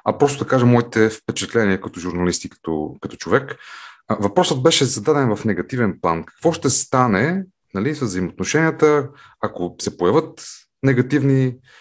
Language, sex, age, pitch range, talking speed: Bulgarian, male, 30-49, 100-135 Hz, 135 wpm